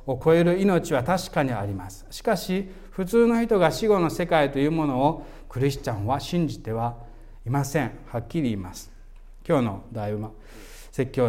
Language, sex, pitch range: Japanese, male, 115-165 Hz